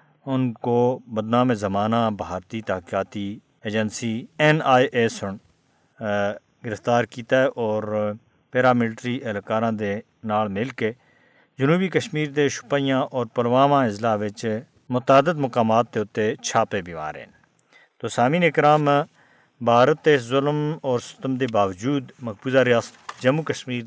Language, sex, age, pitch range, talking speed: Urdu, male, 50-69, 110-140 Hz, 125 wpm